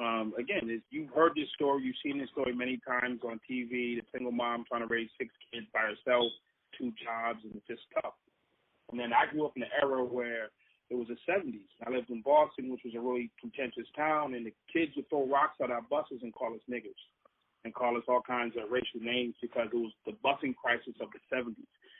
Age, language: 30-49, English